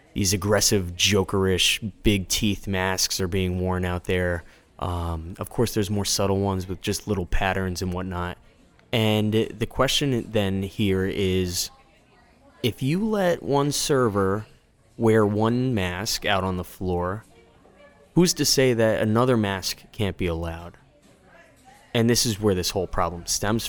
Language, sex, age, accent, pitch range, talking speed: English, male, 20-39, American, 90-115 Hz, 145 wpm